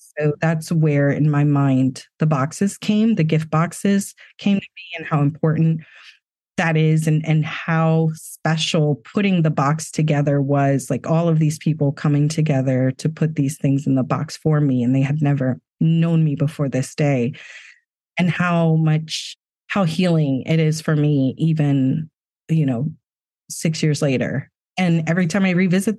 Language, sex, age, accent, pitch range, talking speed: English, female, 30-49, American, 140-165 Hz, 170 wpm